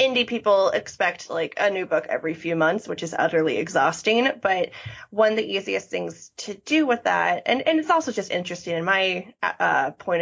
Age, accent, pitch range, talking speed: 20-39, American, 165-210 Hz, 200 wpm